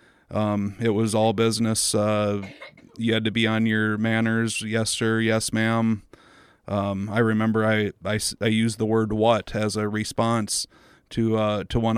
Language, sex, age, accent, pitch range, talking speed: English, male, 30-49, American, 105-115 Hz, 170 wpm